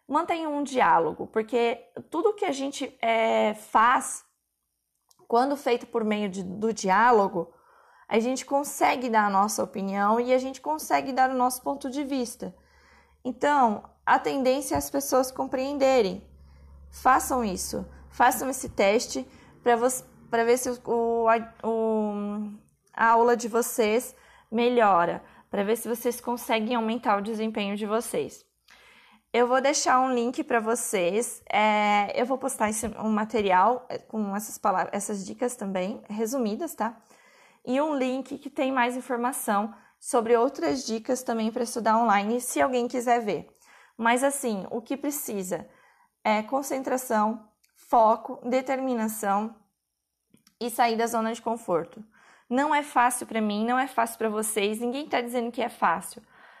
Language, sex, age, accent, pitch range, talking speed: Portuguese, female, 20-39, Brazilian, 220-260 Hz, 140 wpm